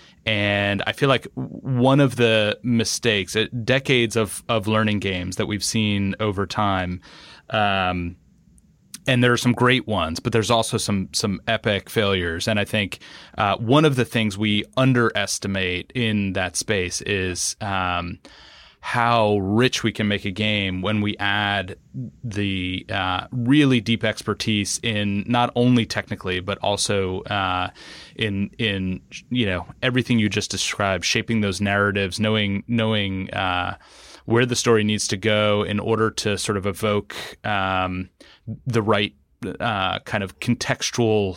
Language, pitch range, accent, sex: English, 100-115 Hz, American, male